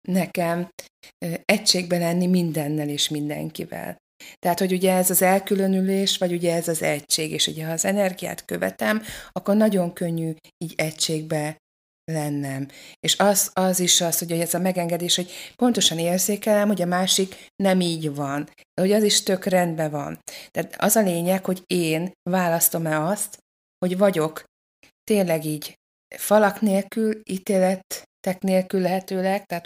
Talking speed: 145 wpm